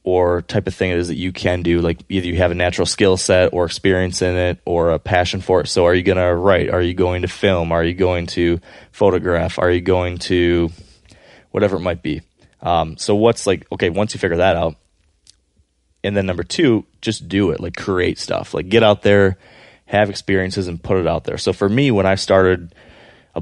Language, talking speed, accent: English, 230 wpm, American